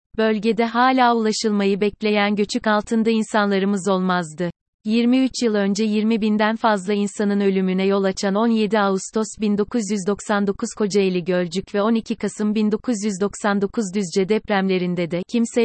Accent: native